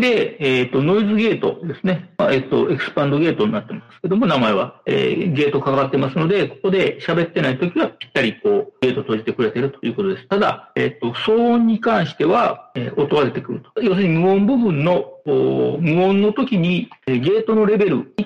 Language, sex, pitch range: Japanese, male, 130-205 Hz